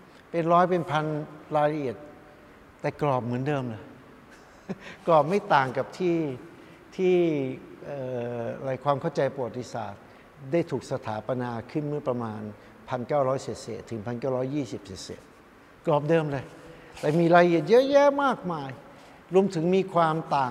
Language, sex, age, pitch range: Thai, male, 60-79, 125-175 Hz